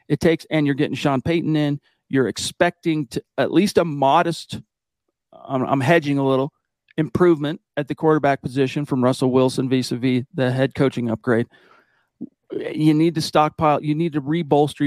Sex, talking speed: male, 155 wpm